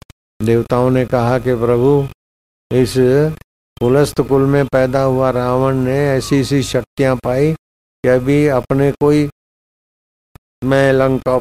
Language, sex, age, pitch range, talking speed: Hindi, male, 50-69, 115-140 Hz, 120 wpm